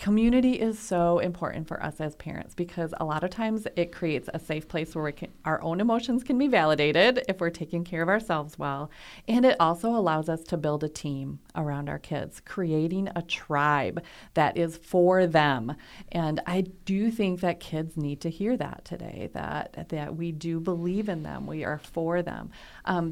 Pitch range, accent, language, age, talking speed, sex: 155-185 Hz, American, English, 30-49, 195 wpm, female